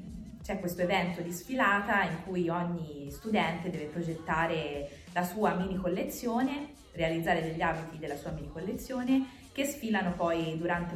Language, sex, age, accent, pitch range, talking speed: Italian, female, 20-39, native, 165-195 Hz, 140 wpm